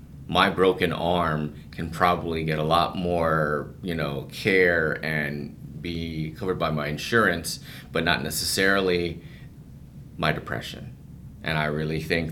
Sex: male